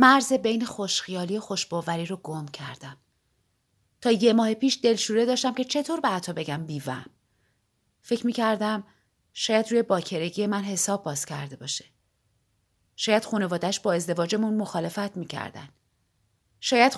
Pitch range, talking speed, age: 140-230 Hz, 135 wpm, 30-49